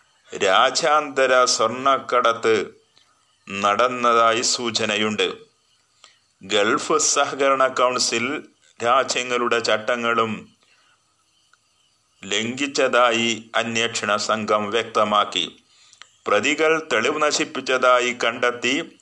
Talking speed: 55 wpm